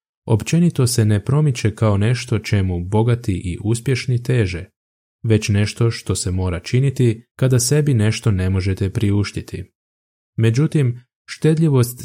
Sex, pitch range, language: male, 95-120 Hz, Croatian